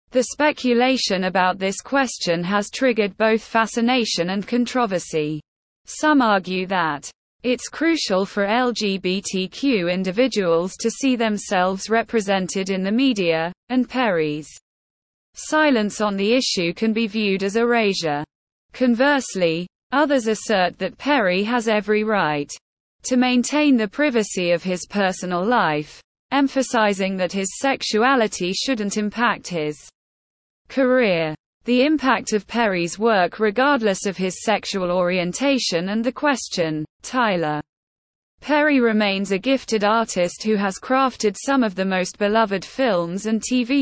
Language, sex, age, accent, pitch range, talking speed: English, female, 20-39, British, 185-245 Hz, 125 wpm